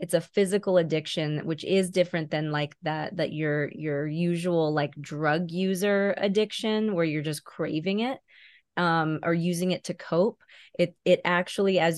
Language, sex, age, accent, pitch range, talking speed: English, female, 20-39, American, 160-180 Hz, 165 wpm